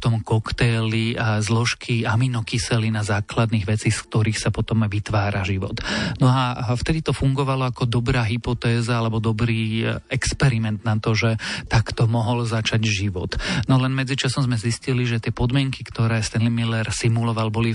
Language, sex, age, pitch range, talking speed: Slovak, male, 40-59, 110-125 Hz, 150 wpm